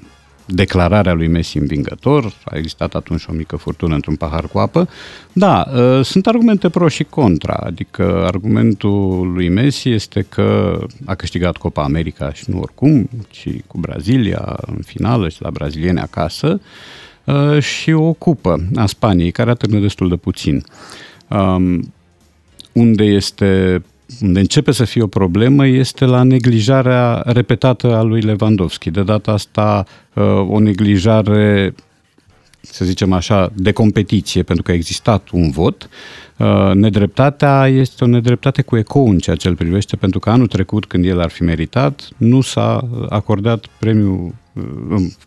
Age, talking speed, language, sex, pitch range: 50-69, 145 wpm, Romanian, male, 90-120 Hz